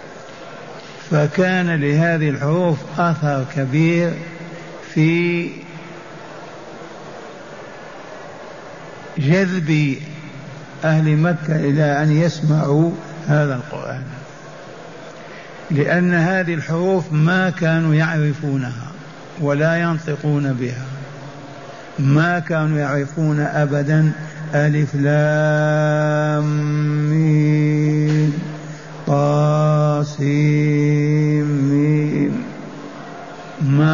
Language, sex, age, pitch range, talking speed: Arabic, male, 60-79, 145-170 Hz, 55 wpm